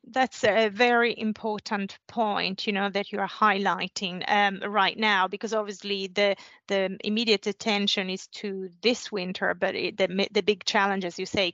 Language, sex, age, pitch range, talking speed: English, female, 30-49, 190-225 Hz, 170 wpm